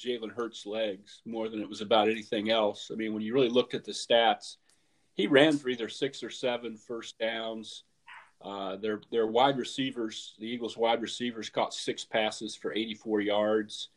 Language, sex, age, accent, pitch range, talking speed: English, male, 40-59, American, 105-135 Hz, 185 wpm